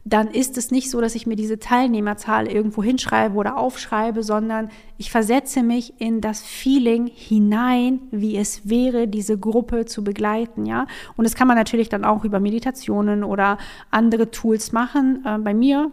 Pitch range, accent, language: 210-245 Hz, German, German